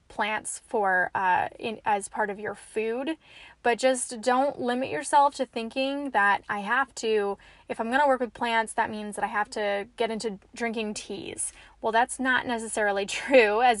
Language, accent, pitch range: English, American, 215-255 Hz